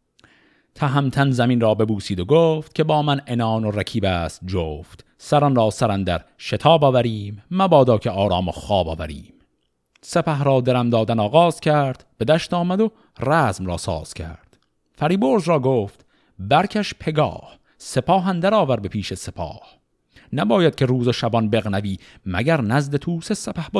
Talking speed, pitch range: 155 wpm, 105-160 Hz